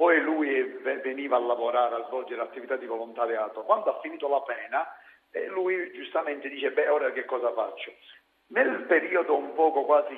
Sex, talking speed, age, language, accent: male, 165 wpm, 50-69, Italian, native